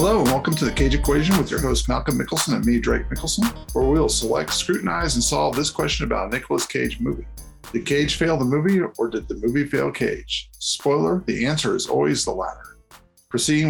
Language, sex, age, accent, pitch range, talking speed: English, male, 50-69, American, 120-170 Hz, 215 wpm